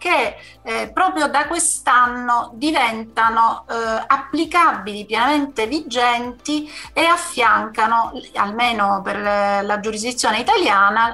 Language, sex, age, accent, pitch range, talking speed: Italian, female, 40-59, native, 210-270 Hz, 95 wpm